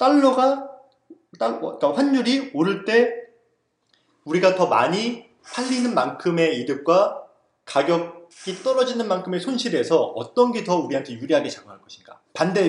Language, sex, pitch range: Korean, male, 165-245 Hz